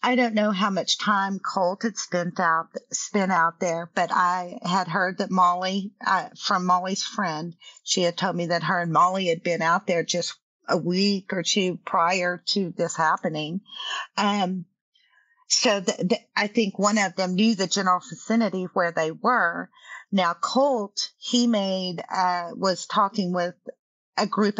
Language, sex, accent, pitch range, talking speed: English, female, American, 180-215 Hz, 170 wpm